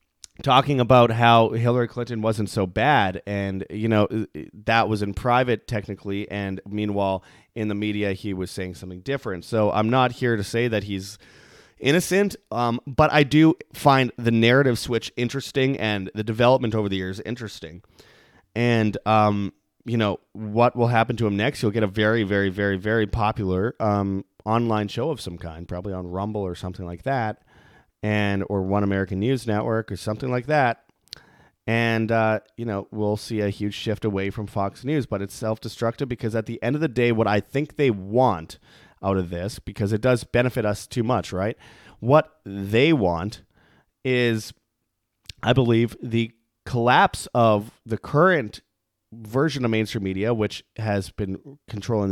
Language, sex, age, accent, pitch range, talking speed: English, male, 30-49, American, 100-120 Hz, 175 wpm